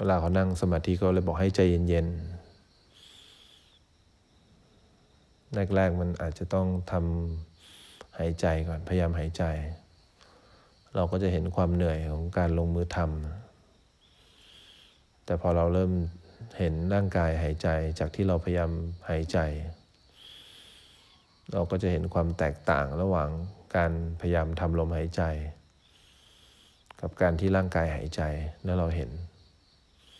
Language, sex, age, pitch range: English, male, 20-39, 80-90 Hz